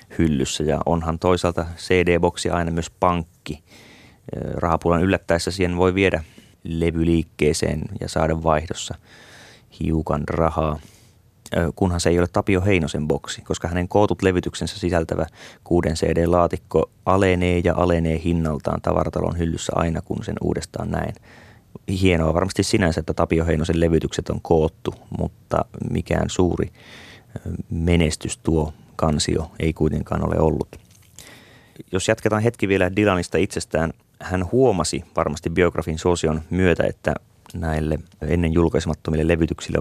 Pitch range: 80-95 Hz